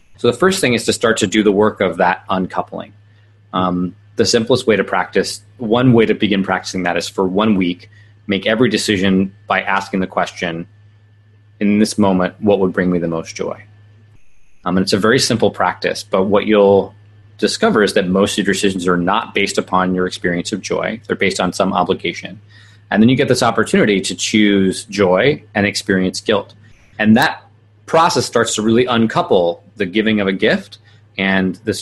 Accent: American